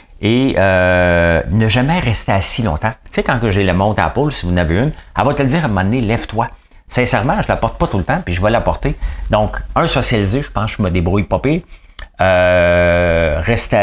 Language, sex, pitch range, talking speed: English, male, 90-130 Hz, 250 wpm